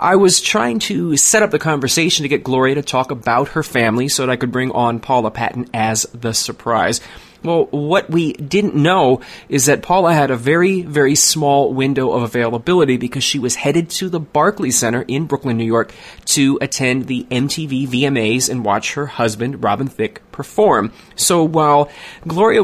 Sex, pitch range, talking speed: male, 120-160 Hz, 185 wpm